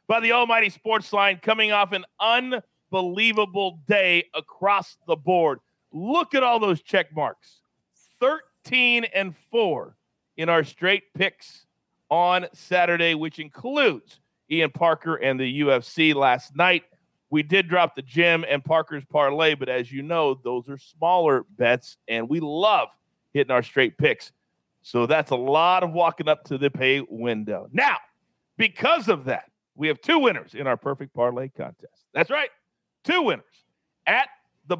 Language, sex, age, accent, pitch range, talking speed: English, male, 40-59, American, 145-210 Hz, 155 wpm